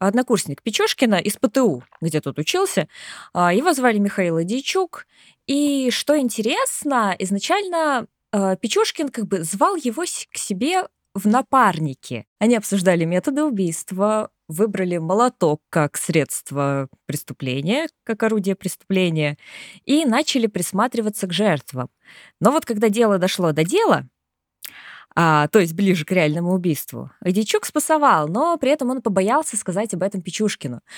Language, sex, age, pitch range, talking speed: Russian, female, 20-39, 175-255 Hz, 125 wpm